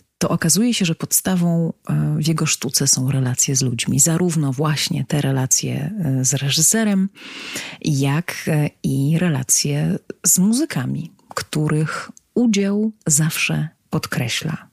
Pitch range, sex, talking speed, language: 140-175 Hz, female, 110 wpm, Polish